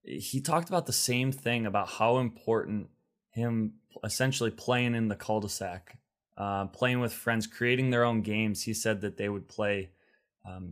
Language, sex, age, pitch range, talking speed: English, male, 20-39, 100-115 Hz, 170 wpm